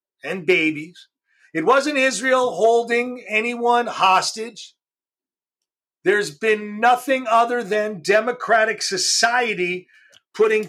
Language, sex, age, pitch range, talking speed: English, male, 50-69, 205-270 Hz, 90 wpm